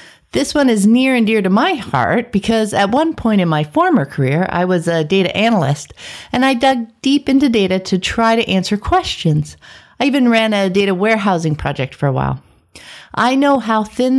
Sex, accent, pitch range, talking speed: female, American, 175-240 Hz, 200 wpm